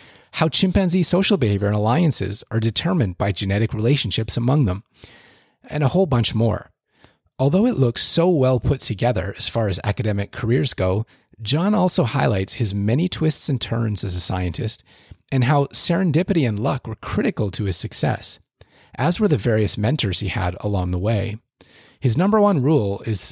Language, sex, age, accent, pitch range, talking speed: English, male, 30-49, American, 100-140 Hz, 170 wpm